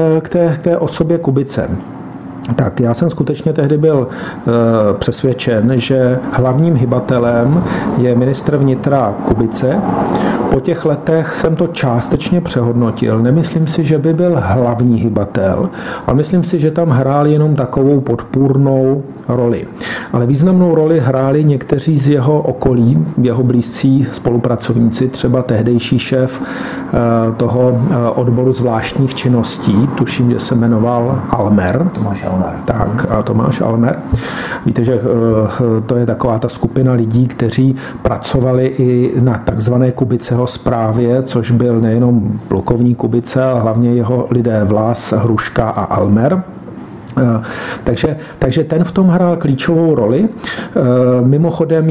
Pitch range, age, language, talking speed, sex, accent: 120-150 Hz, 50-69, Czech, 130 wpm, male, native